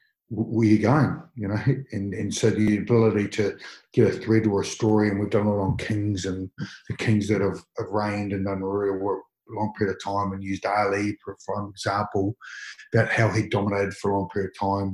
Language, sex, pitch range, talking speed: English, male, 100-110 Hz, 220 wpm